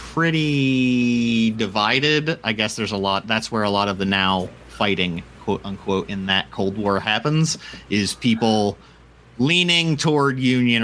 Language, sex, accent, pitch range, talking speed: English, male, American, 100-135 Hz, 150 wpm